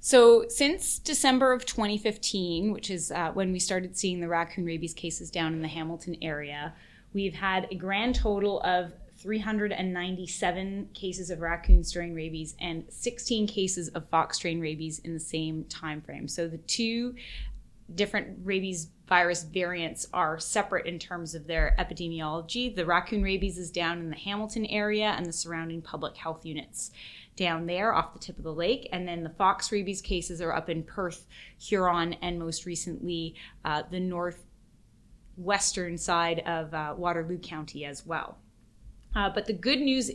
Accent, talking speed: American, 165 wpm